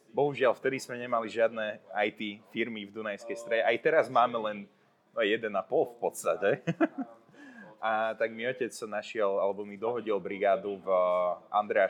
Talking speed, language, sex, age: 145 wpm, Slovak, male, 20-39